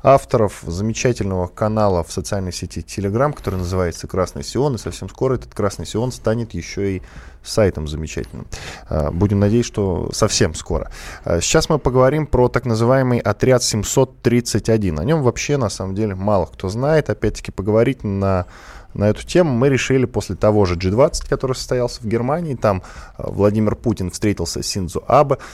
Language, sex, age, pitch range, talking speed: Russian, male, 20-39, 95-130 Hz, 155 wpm